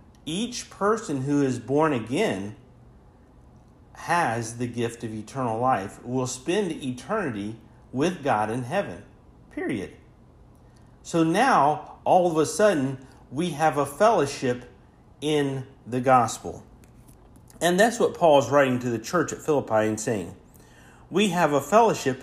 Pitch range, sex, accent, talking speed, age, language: 125-170 Hz, male, American, 135 wpm, 50-69, English